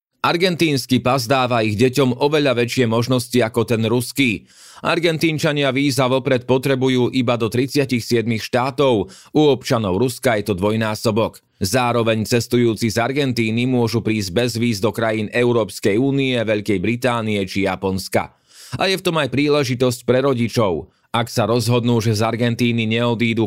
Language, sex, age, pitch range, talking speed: Slovak, male, 30-49, 115-135 Hz, 145 wpm